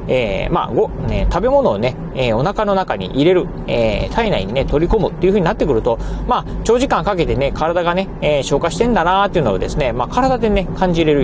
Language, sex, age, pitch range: Japanese, male, 40-59, 140-220 Hz